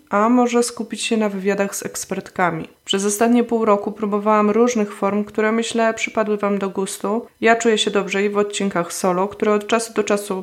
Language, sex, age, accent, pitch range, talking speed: Polish, female, 20-39, native, 200-230 Hz, 195 wpm